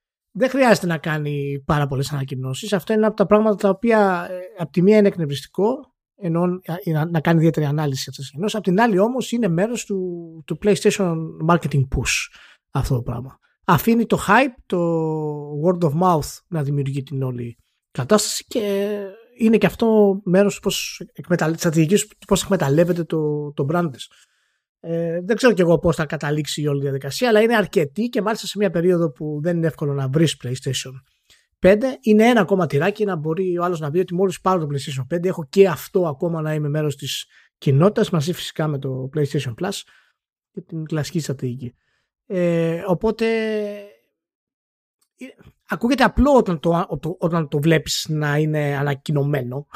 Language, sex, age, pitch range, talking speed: Greek, male, 20-39, 150-200 Hz, 175 wpm